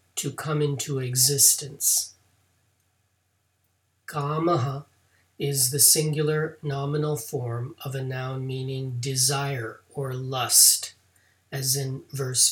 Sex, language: male, English